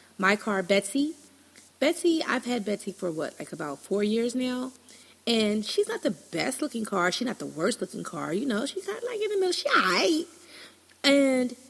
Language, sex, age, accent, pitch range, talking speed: English, female, 30-49, American, 195-290 Hz, 195 wpm